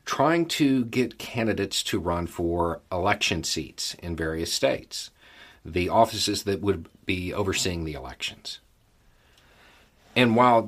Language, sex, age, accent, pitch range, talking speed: English, male, 40-59, American, 85-110 Hz, 125 wpm